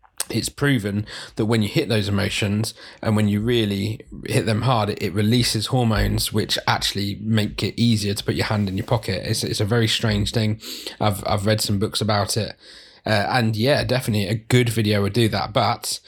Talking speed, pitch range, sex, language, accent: 200 wpm, 105-120 Hz, male, English, British